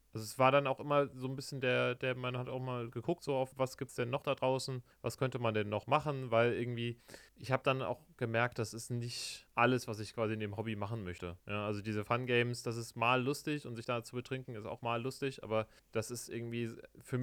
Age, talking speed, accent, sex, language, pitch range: 30-49, 255 wpm, German, male, German, 115-135 Hz